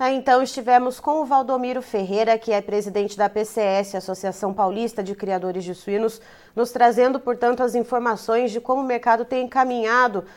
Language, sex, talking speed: Portuguese, female, 170 wpm